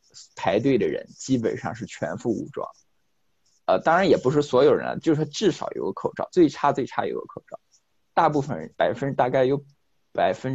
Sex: male